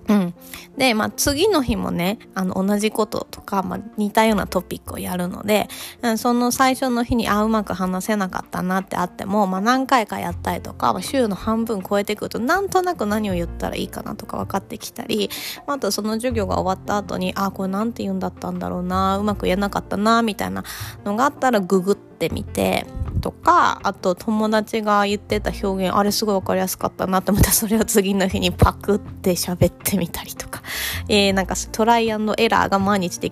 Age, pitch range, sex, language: 20-39, 190-240 Hz, female, Japanese